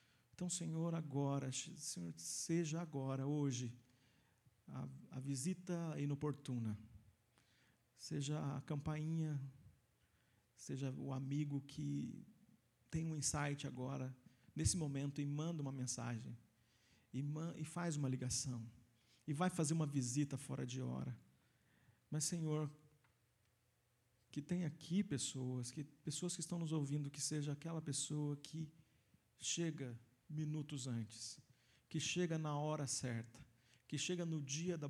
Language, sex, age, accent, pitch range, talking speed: Portuguese, male, 40-59, Brazilian, 120-155 Hz, 125 wpm